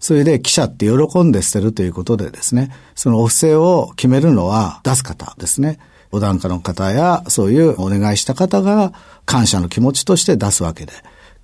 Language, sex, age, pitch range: Japanese, male, 50-69, 100-135 Hz